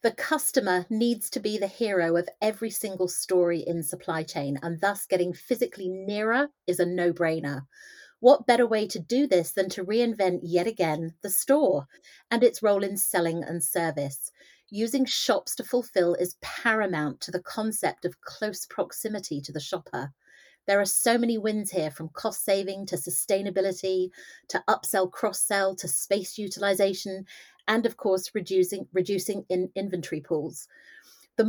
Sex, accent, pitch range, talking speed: female, British, 180-230 Hz, 160 wpm